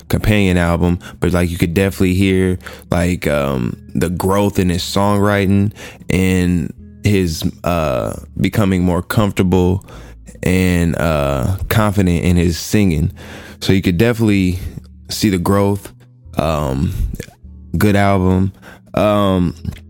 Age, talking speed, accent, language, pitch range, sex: 20-39, 115 wpm, American, English, 85-100 Hz, male